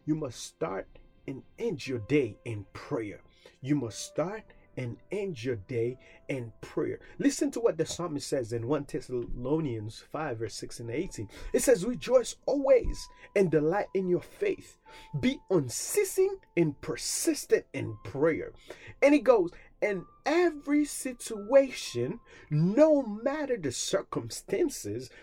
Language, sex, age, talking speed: English, male, 30-49, 135 wpm